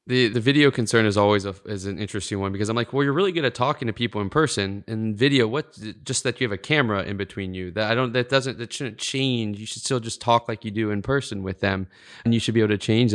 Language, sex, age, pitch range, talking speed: English, male, 20-39, 110-140 Hz, 290 wpm